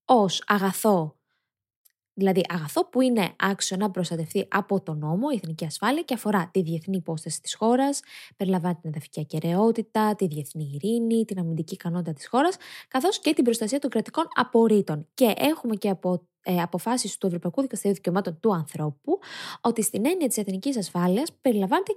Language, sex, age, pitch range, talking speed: Greek, female, 20-39, 175-245 Hz, 160 wpm